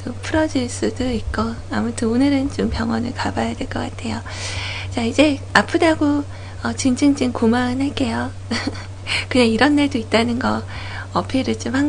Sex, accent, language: female, native, Korean